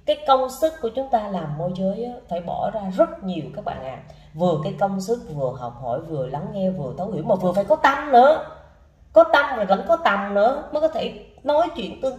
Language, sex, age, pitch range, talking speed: Vietnamese, female, 20-39, 190-275 Hz, 240 wpm